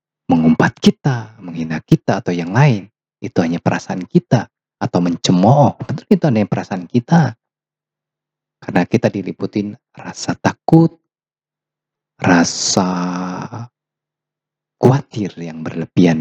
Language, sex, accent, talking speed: Indonesian, male, native, 100 wpm